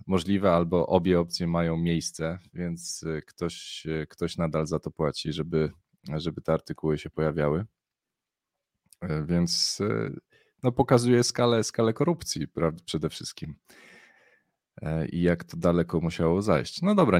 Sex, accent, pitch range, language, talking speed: male, native, 80-90 Hz, Polish, 125 wpm